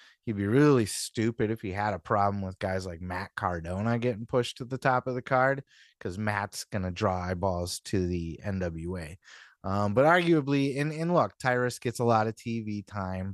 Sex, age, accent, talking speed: male, 30-49, American, 195 wpm